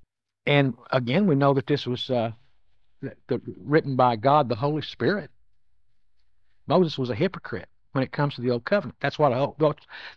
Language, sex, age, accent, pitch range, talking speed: English, male, 60-79, American, 130-180 Hz, 175 wpm